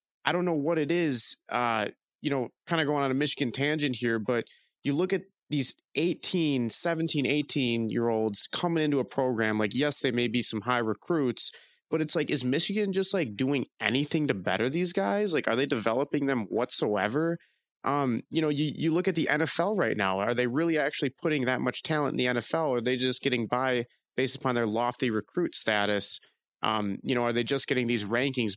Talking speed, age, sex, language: 210 wpm, 20-39, male, English